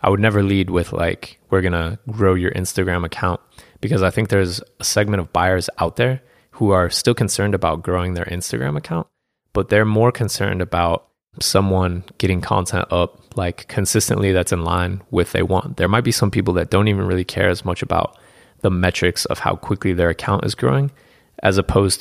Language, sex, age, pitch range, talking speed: English, male, 20-39, 90-105 Hz, 200 wpm